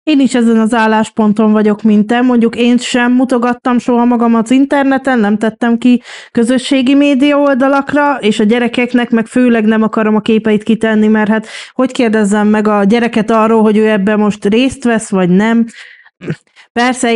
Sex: female